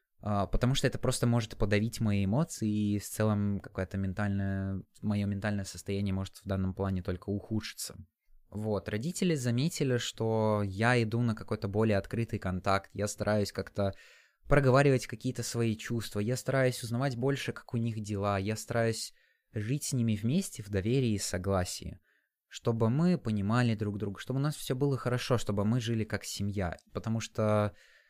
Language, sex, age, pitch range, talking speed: Russian, male, 20-39, 105-125 Hz, 160 wpm